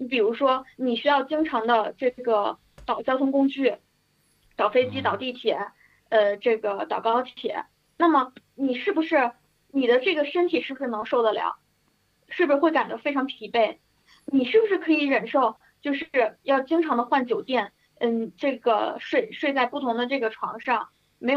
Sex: female